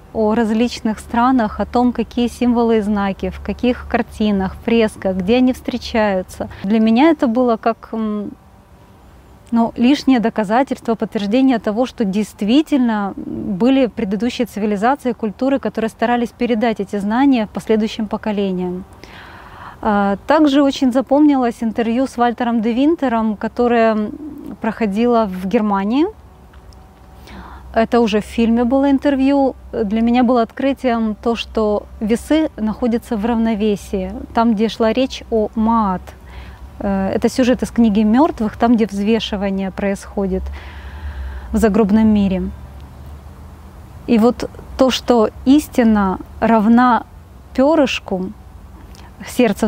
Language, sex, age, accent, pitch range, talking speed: Russian, female, 20-39, native, 210-245 Hz, 115 wpm